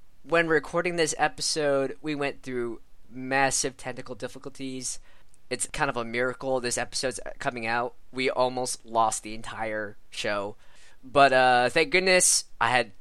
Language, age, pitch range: English, 20-39, 130-175 Hz